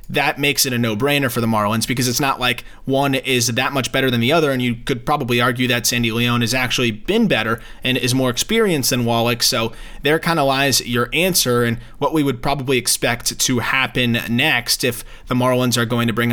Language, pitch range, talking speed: English, 115-140 Hz, 225 wpm